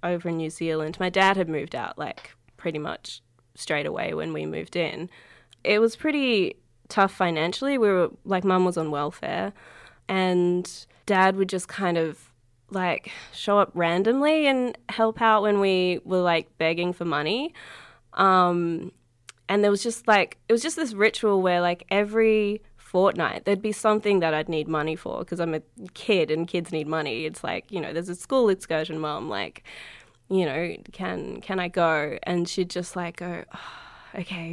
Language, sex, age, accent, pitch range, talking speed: English, female, 20-39, Australian, 160-195 Hz, 180 wpm